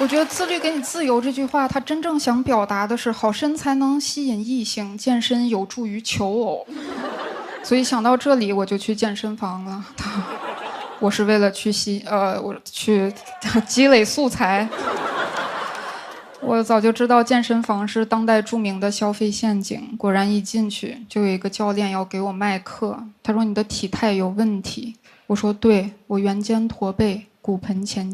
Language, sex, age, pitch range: Chinese, female, 10-29, 205-245 Hz